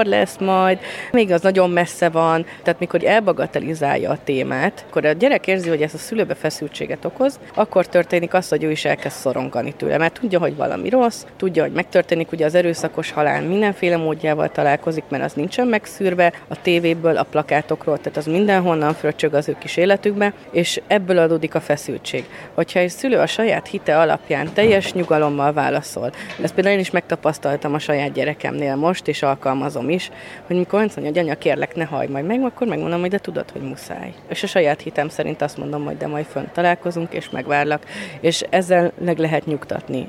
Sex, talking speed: female, 190 wpm